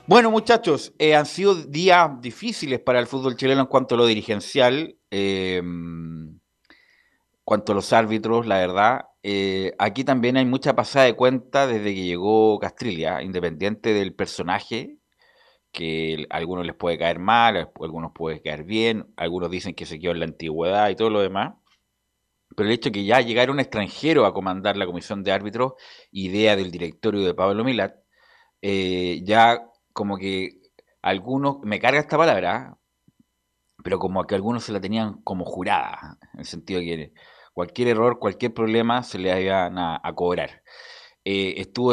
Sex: male